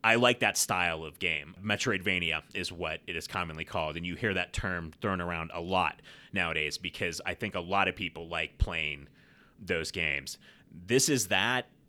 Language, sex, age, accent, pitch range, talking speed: English, male, 30-49, American, 85-110 Hz, 185 wpm